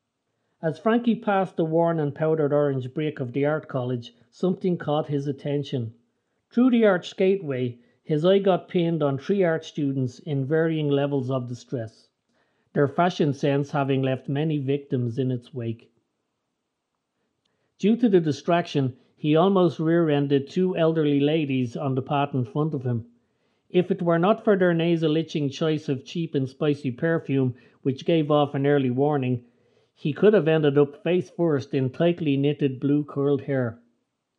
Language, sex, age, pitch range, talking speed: English, male, 50-69, 135-165 Hz, 165 wpm